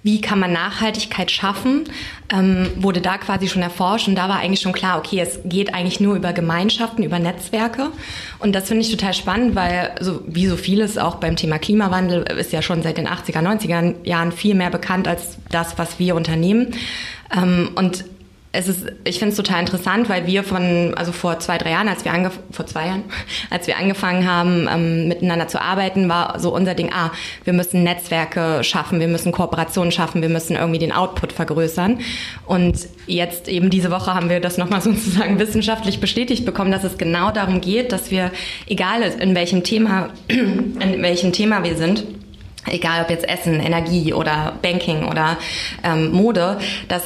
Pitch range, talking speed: 170-195 Hz, 185 wpm